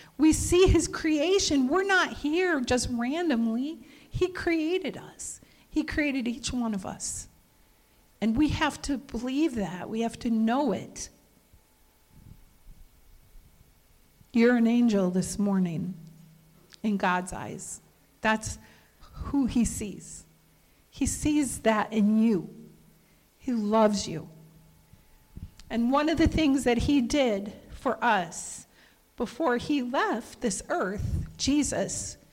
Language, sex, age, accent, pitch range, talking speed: English, female, 50-69, American, 205-270 Hz, 120 wpm